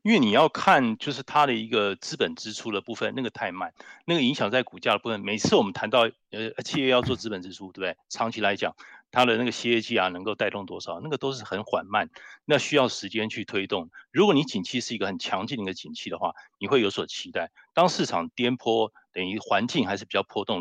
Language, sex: Chinese, male